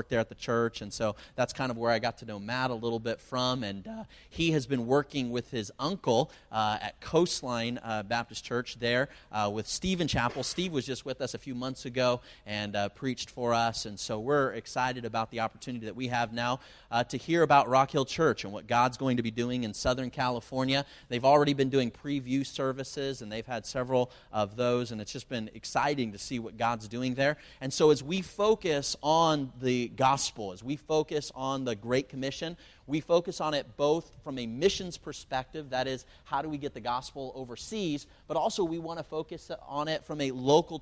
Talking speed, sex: 220 wpm, male